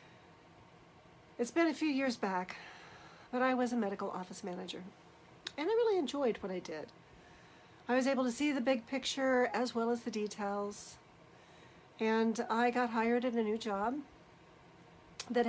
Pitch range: 205-260 Hz